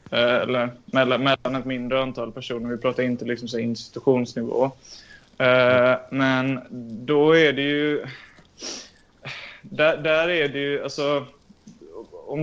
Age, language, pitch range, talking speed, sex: 20-39, Swedish, 125-145 Hz, 125 wpm, male